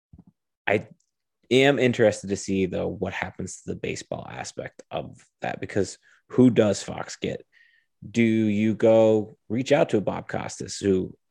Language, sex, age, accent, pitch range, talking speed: English, male, 30-49, American, 95-115 Hz, 155 wpm